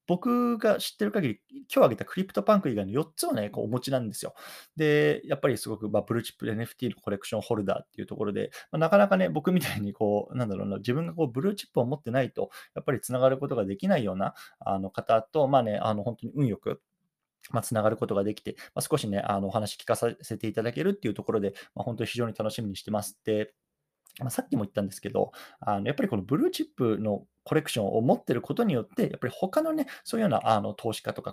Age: 20-39